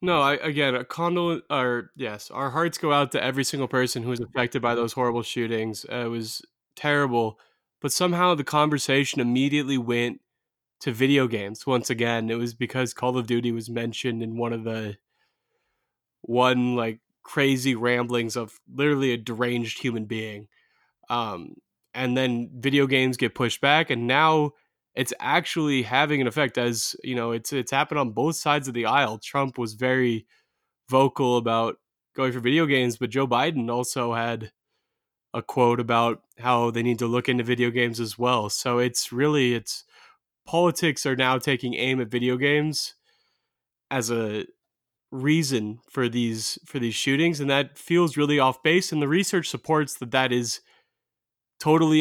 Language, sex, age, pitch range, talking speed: English, male, 20-39, 120-145 Hz, 170 wpm